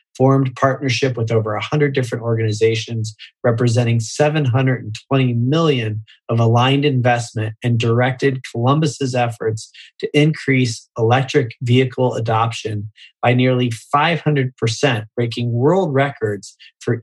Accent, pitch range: American, 115-135 Hz